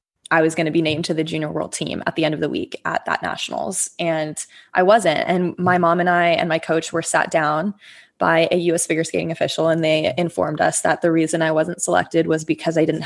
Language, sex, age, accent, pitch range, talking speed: English, female, 20-39, American, 165-195 Hz, 250 wpm